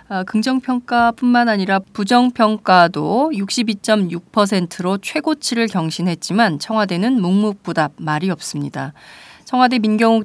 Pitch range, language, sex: 175-225 Hz, Korean, female